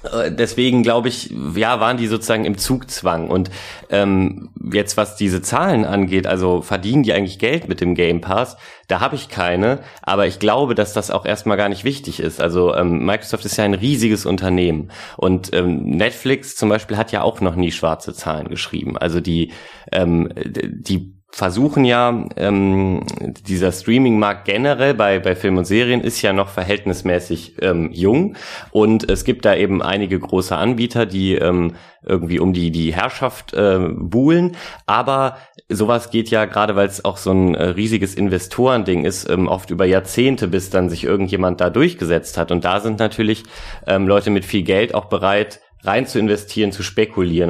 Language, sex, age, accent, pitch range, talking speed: German, male, 30-49, German, 90-110 Hz, 175 wpm